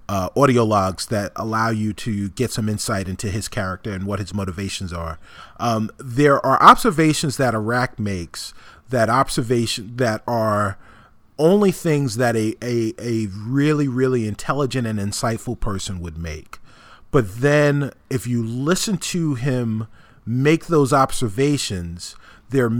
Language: English